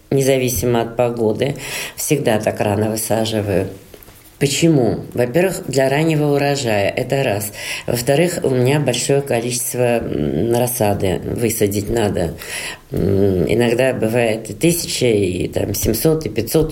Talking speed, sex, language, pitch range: 110 wpm, female, Russian, 110-135 Hz